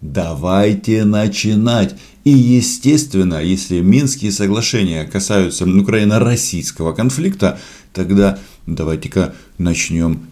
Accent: native